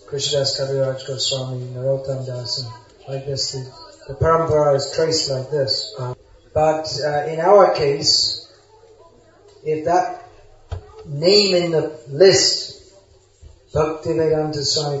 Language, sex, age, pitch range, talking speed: English, male, 30-49, 130-155 Hz, 110 wpm